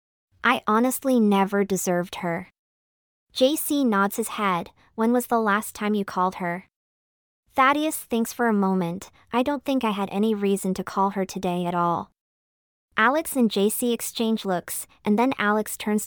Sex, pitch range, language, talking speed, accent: male, 180-230 Hz, English, 165 wpm, American